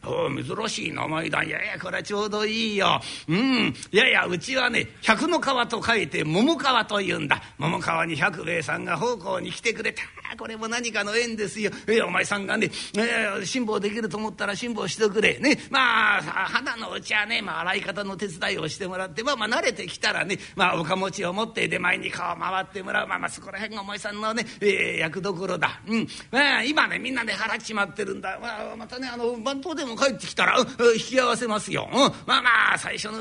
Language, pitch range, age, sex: Japanese, 205-260 Hz, 40-59, male